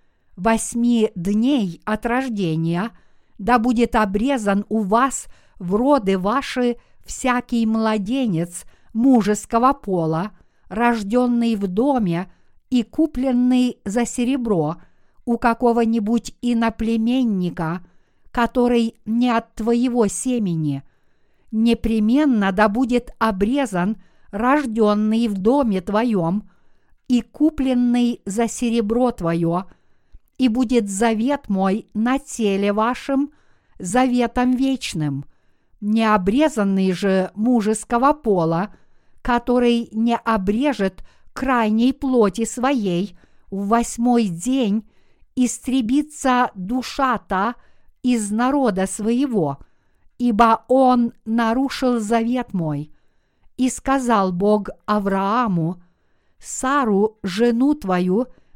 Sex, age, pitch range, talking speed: female, 50-69, 200-250 Hz, 85 wpm